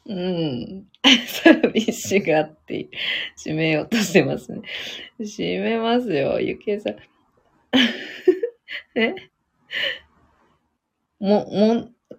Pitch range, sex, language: 160-235 Hz, female, Japanese